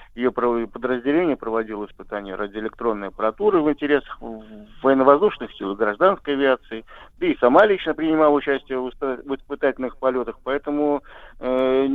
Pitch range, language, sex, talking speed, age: 115-145 Hz, Russian, male, 125 wpm, 50-69